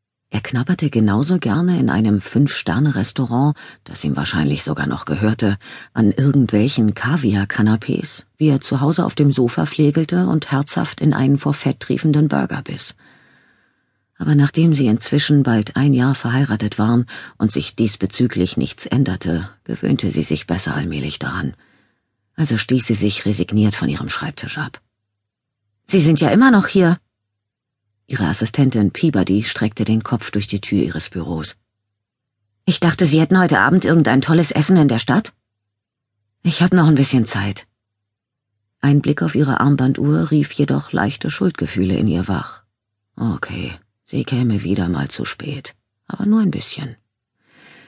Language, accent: German, German